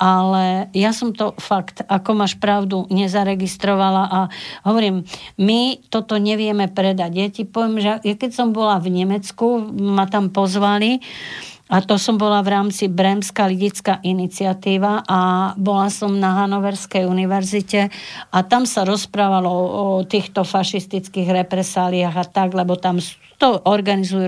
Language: Slovak